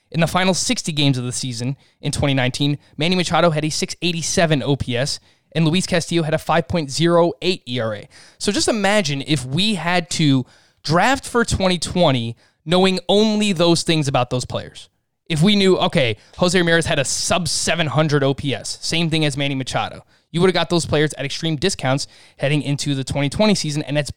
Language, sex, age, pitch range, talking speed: English, male, 20-39, 135-175 Hz, 175 wpm